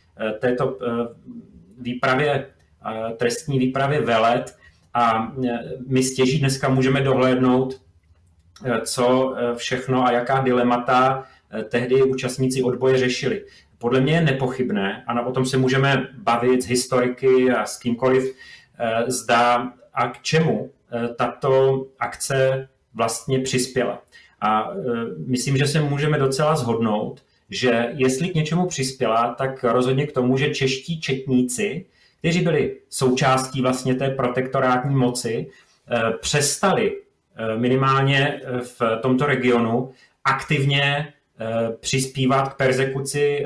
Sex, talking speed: male, 110 wpm